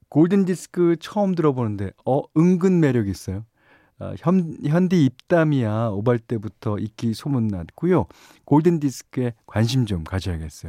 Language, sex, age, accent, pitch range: Korean, male, 40-59, native, 95-150 Hz